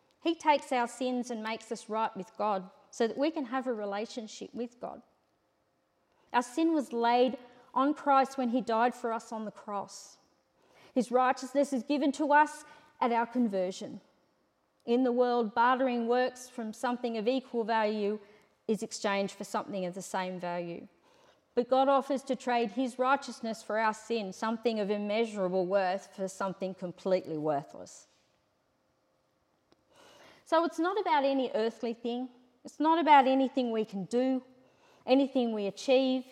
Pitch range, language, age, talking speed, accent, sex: 215-265 Hz, English, 40-59, 155 wpm, Australian, female